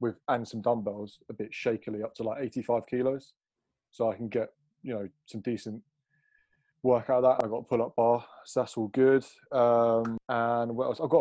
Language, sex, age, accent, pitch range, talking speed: English, male, 20-39, British, 110-130 Hz, 210 wpm